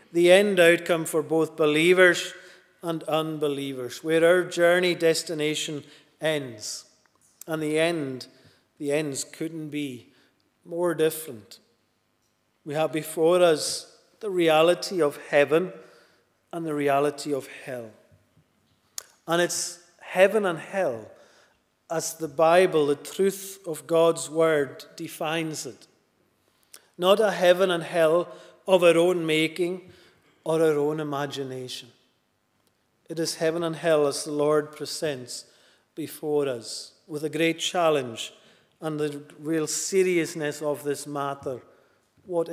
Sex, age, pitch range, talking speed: male, 40-59, 145-170 Hz, 120 wpm